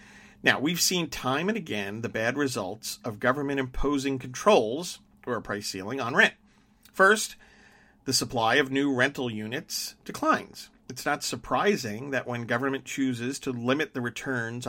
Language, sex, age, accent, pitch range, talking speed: English, male, 50-69, American, 115-150 Hz, 155 wpm